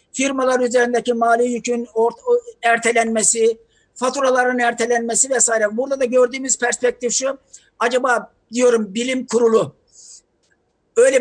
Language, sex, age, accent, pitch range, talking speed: Turkish, male, 60-79, native, 230-265 Hz, 95 wpm